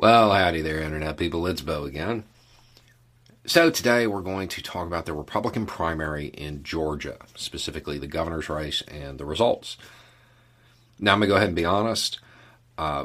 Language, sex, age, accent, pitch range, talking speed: English, male, 40-59, American, 75-120 Hz, 170 wpm